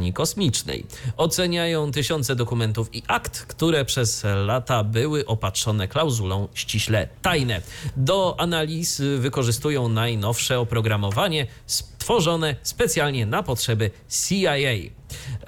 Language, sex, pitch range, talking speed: Polish, male, 110-150 Hz, 100 wpm